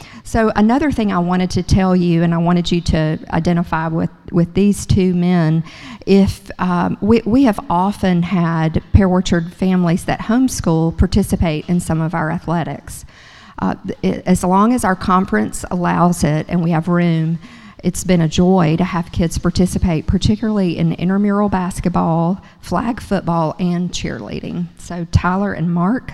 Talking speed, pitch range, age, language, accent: 160 wpm, 170-200 Hz, 50-69, English, American